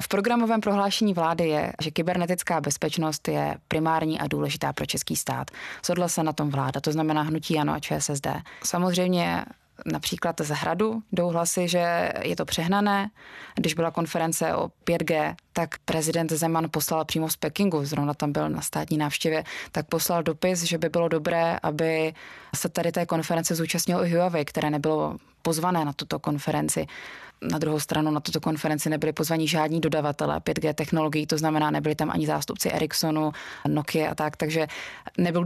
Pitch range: 155-175 Hz